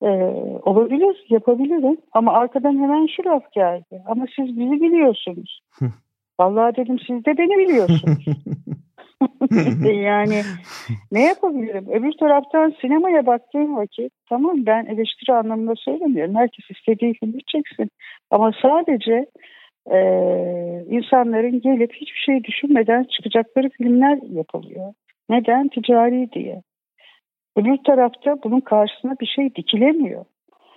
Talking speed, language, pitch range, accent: 110 wpm, Turkish, 205-275 Hz, native